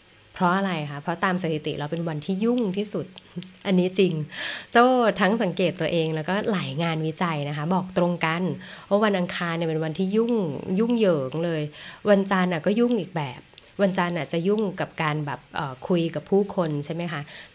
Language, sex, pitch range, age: Thai, female, 150-190 Hz, 20-39